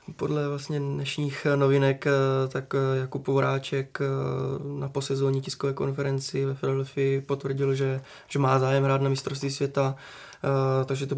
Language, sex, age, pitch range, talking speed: Czech, male, 20-39, 135-140 Hz, 130 wpm